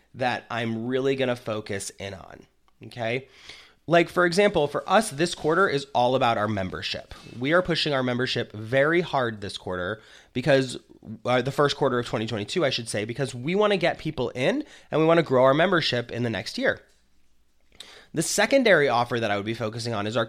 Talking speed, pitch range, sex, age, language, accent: 205 wpm, 115-170 Hz, male, 30-49, English, American